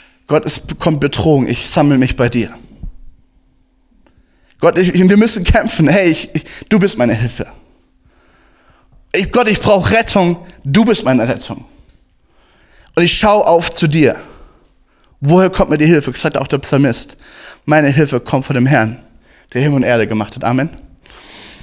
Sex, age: male, 20-39